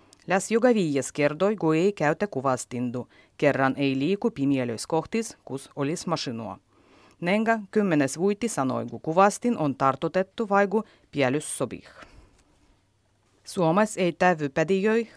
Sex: female